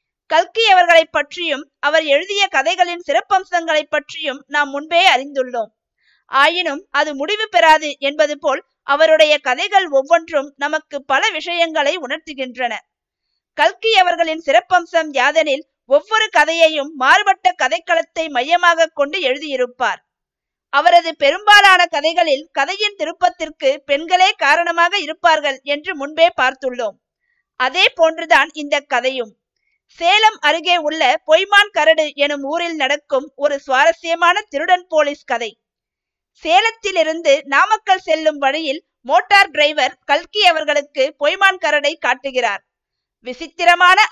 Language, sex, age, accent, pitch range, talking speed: Tamil, female, 50-69, native, 275-345 Hz, 100 wpm